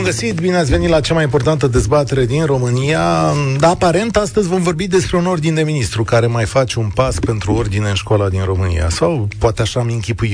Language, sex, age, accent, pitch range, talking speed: Romanian, male, 30-49, native, 110-150 Hz, 210 wpm